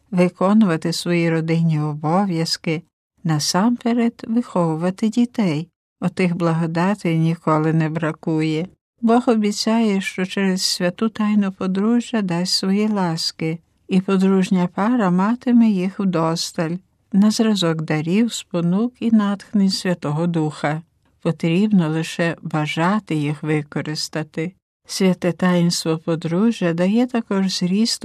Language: Ukrainian